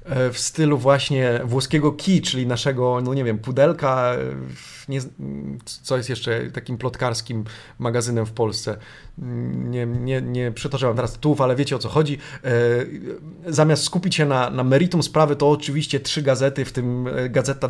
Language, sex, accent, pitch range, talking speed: Polish, male, native, 125-150 Hz, 155 wpm